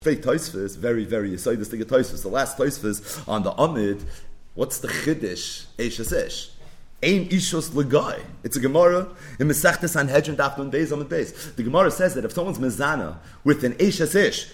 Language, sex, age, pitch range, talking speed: English, male, 30-49, 140-190 Hz, 175 wpm